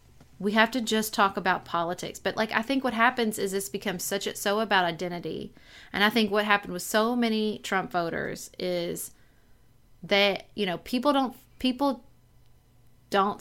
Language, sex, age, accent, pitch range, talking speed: English, female, 30-49, American, 175-210 Hz, 175 wpm